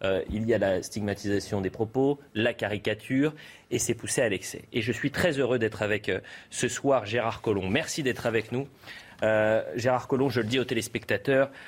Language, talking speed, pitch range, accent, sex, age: French, 200 wpm, 110-140 Hz, French, male, 30-49